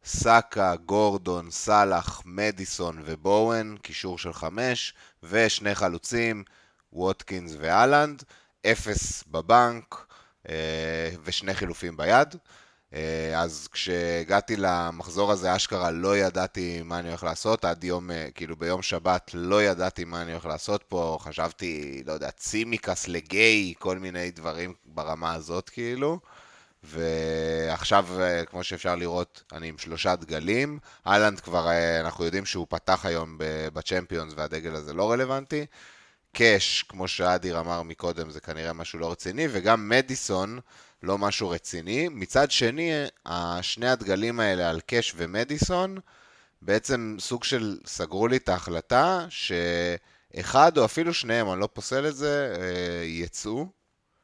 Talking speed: 125 wpm